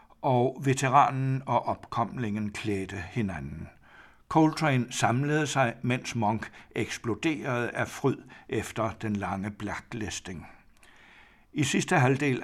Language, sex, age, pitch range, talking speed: Danish, male, 60-79, 110-130 Hz, 100 wpm